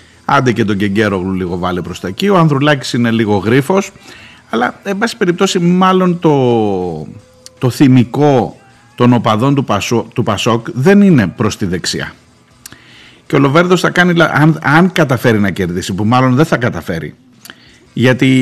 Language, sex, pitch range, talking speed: Greek, male, 115-180 Hz, 160 wpm